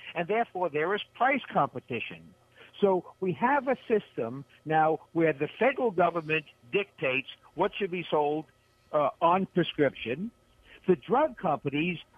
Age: 60-79